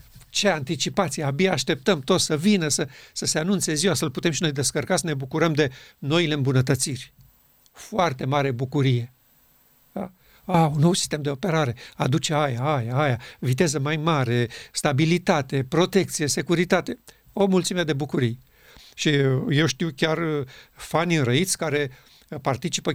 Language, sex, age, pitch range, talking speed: Romanian, male, 50-69, 135-170 Hz, 140 wpm